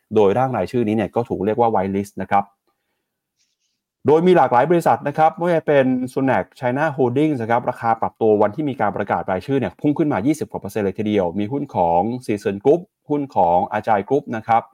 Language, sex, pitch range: Thai, male, 105-135 Hz